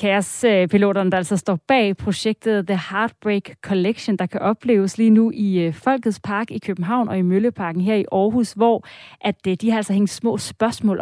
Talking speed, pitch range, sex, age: 180 wpm, 180-220 Hz, female, 30-49